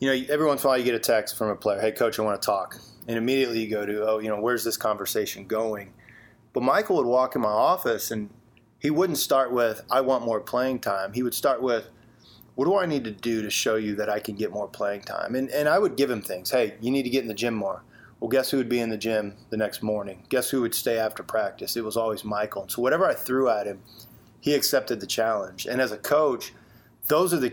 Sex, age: male, 30-49